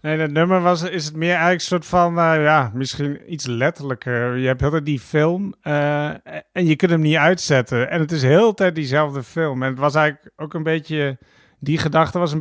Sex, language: male, Dutch